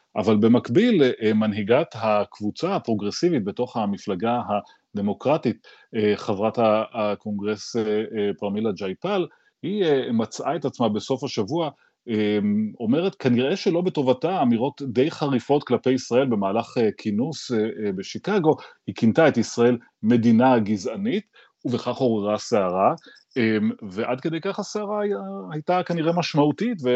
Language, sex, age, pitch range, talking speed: Hebrew, male, 30-49, 105-140 Hz, 100 wpm